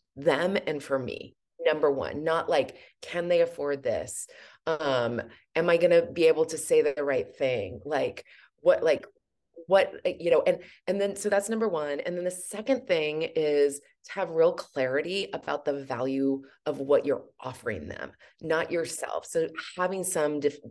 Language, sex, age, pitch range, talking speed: English, female, 30-49, 155-255 Hz, 170 wpm